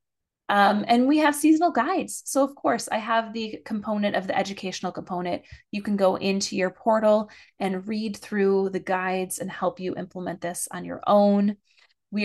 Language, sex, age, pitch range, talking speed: English, female, 20-39, 180-215 Hz, 180 wpm